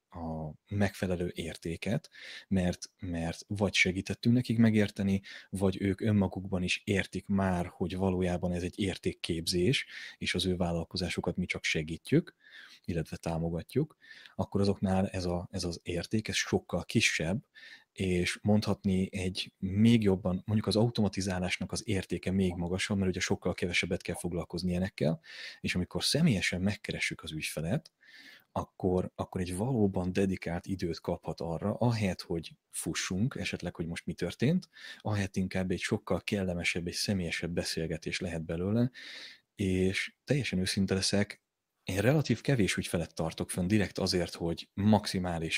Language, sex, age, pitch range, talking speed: Hungarian, male, 30-49, 90-100 Hz, 135 wpm